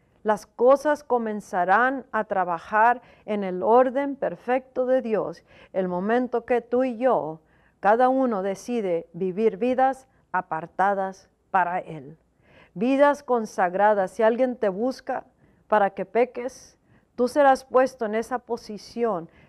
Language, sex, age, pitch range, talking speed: Spanish, female, 40-59, 200-255 Hz, 125 wpm